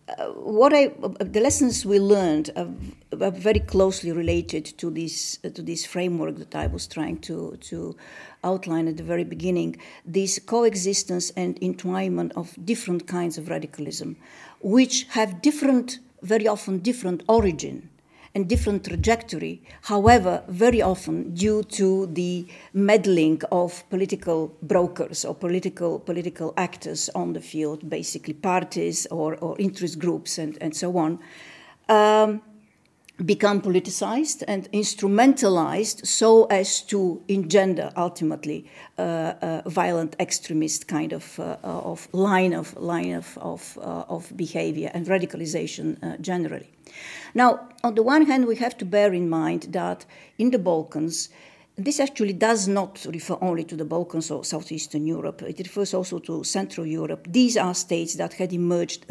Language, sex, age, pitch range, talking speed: English, female, 50-69, 165-210 Hz, 140 wpm